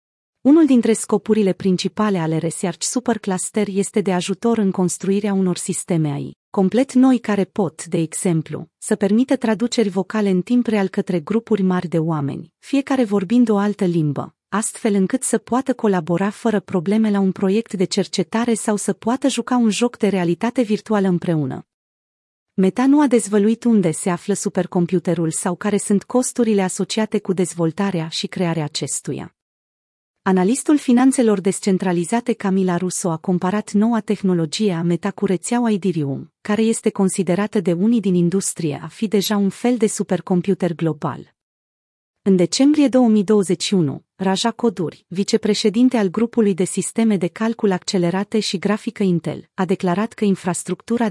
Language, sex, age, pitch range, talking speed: Romanian, female, 30-49, 180-220 Hz, 145 wpm